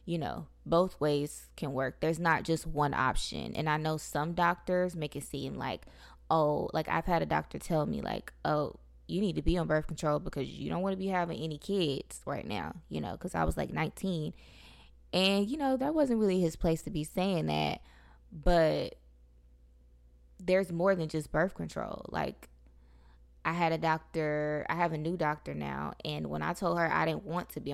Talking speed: 205 wpm